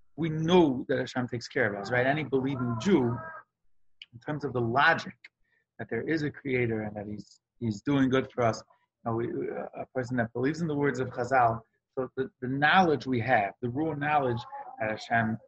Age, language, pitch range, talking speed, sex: 30-49, English, 115-135 Hz, 200 wpm, male